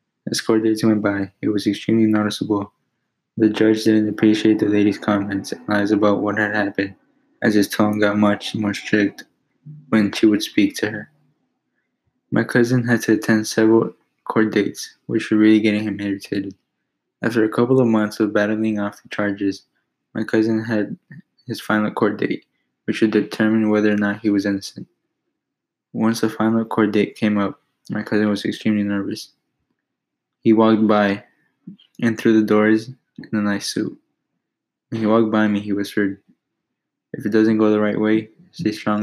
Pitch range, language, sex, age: 105-110 Hz, English, male, 20-39